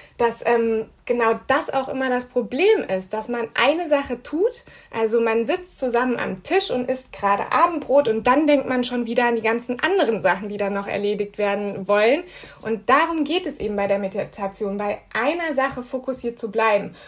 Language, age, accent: German, 20-39, German